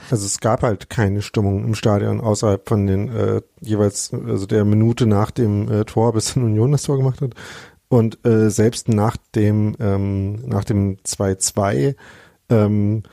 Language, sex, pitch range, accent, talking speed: German, male, 100-115 Hz, German, 170 wpm